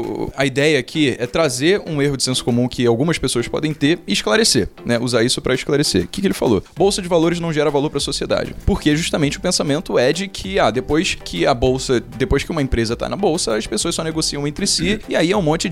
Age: 20-39